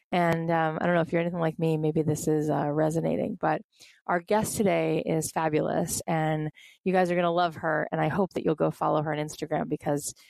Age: 20-39